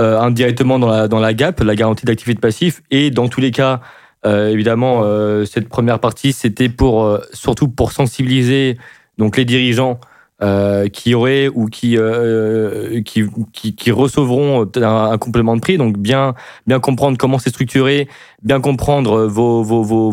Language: French